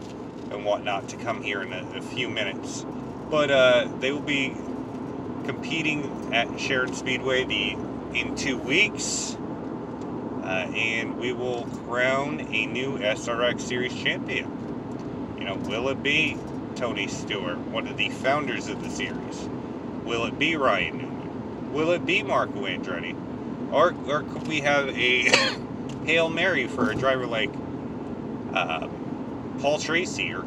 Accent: American